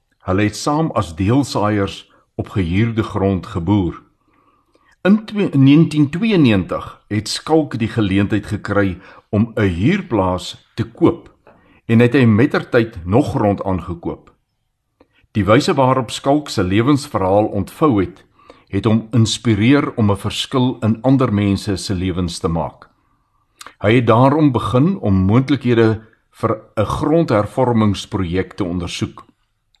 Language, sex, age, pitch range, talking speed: Swedish, male, 60-79, 95-130 Hz, 120 wpm